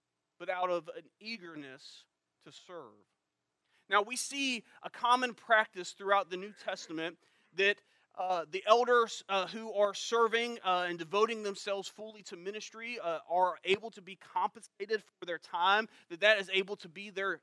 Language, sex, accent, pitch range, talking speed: English, male, American, 155-225 Hz, 165 wpm